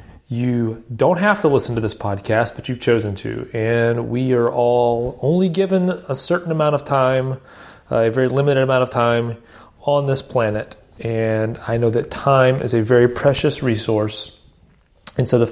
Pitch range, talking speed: 115-145 Hz, 180 wpm